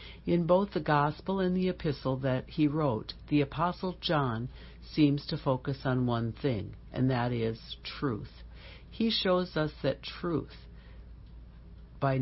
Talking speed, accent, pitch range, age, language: 140 wpm, American, 115-150 Hz, 60-79, English